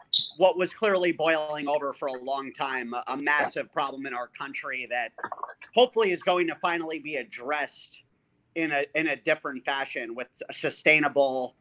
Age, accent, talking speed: 30-49, American, 160 wpm